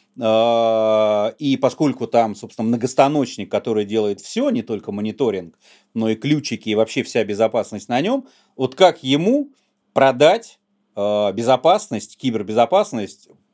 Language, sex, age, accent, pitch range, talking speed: Russian, male, 30-49, native, 120-165 Hz, 115 wpm